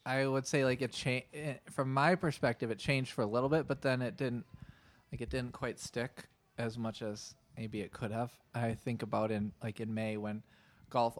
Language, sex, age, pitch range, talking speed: English, male, 20-39, 110-135 Hz, 220 wpm